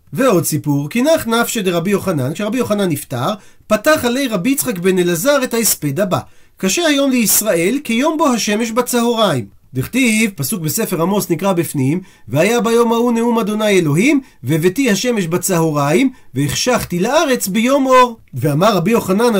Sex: male